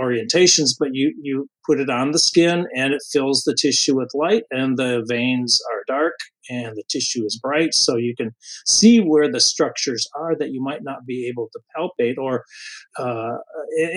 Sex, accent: male, American